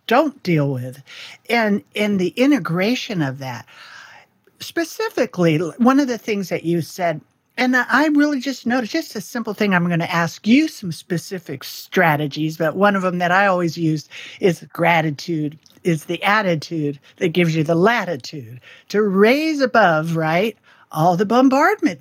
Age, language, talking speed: 50-69, English, 160 wpm